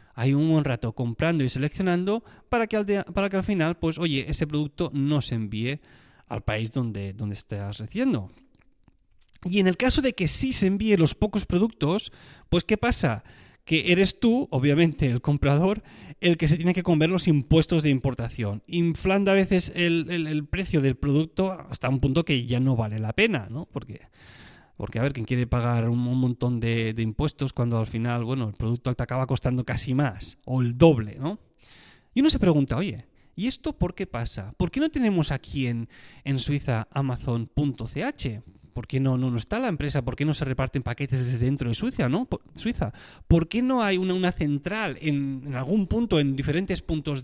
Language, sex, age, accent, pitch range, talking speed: Spanish, male, 30-49, Spanish, 120-175 Hz, 200 wpm